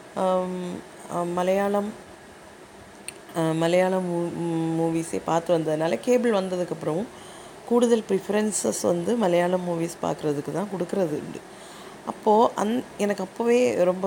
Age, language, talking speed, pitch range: 20-39, Tamil, 90 wpm, 165-200 Hz